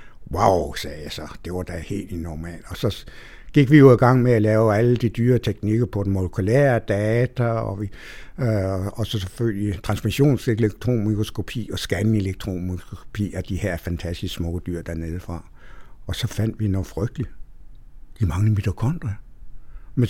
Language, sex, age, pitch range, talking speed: Danish, male, 60-79, 105-135 Hz, 160 wpm